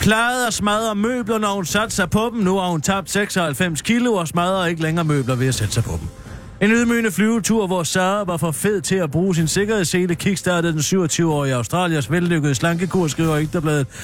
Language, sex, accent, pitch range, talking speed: Danish, male, native, 145-190 Hz, 205 wpm